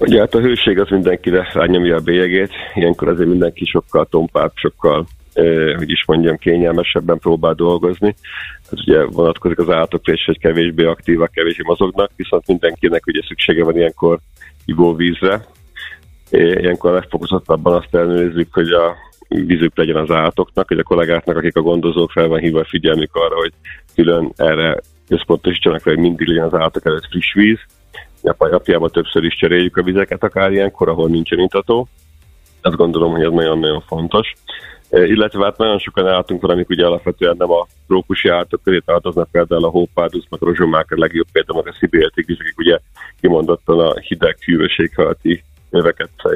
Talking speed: 160 wpm